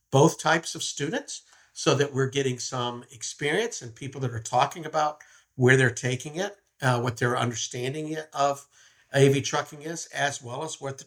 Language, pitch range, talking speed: English, 120-145 Hz, 180 wpm